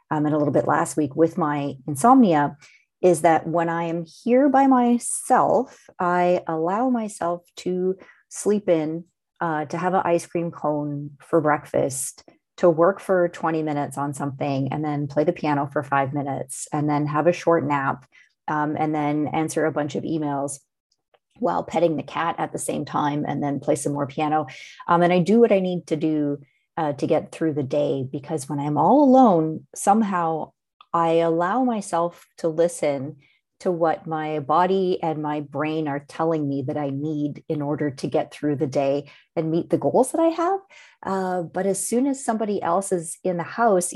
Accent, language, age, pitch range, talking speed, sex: American, English, 30-49, 150-180 Hz, 190 wpm, female